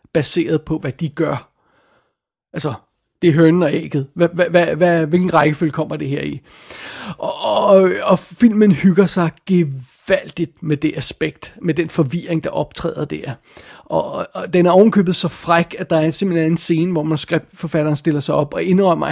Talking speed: 155 wpm